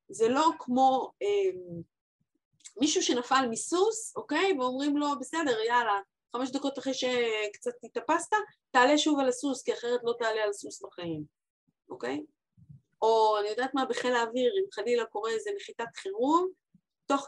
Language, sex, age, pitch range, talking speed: Hebrew, female, 30-49, 230-375 Hz, 145 wpm